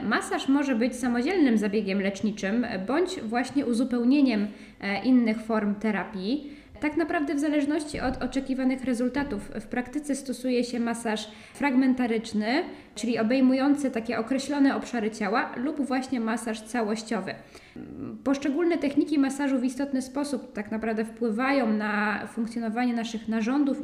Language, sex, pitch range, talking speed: Polish, female, 215-265 Hz, 120 wpm